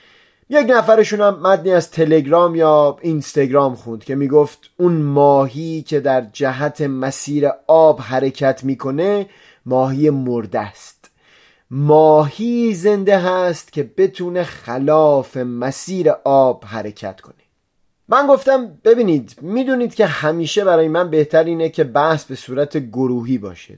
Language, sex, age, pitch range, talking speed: Persian, male, 30-49, 130-165 Hz, 120 wpm